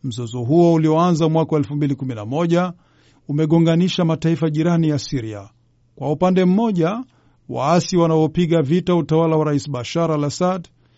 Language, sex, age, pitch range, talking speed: Swahili, male, 50-69, 140-170 Hz, 115 wpm